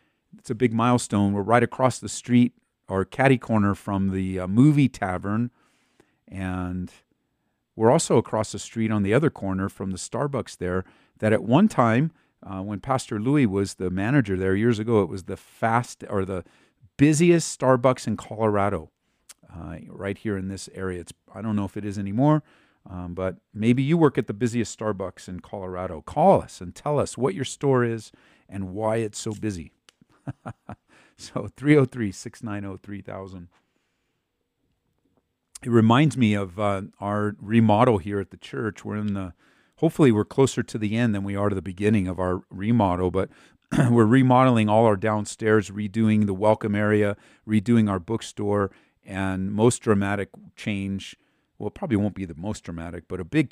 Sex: male